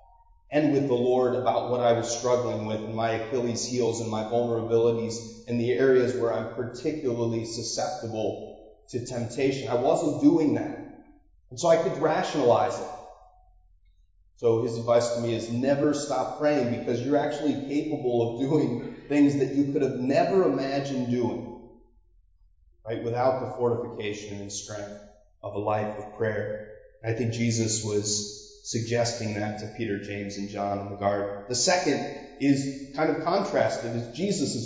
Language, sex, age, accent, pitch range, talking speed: English, male, 30-49, American, 110-145 Hz, 160 wpm